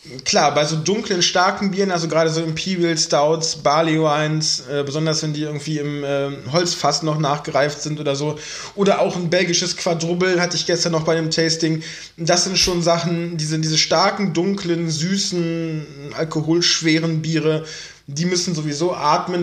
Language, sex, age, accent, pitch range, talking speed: German, male, 20-39, German, 155-180 Hz, 165 wpm